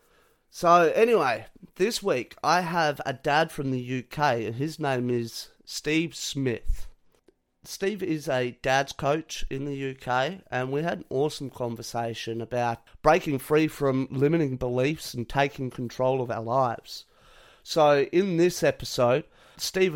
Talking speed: 145 wpm